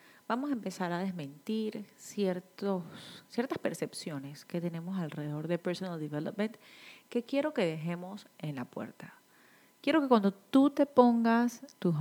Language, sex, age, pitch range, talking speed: Spanish, female, 30-49, 175-225 Hz, 140 wpm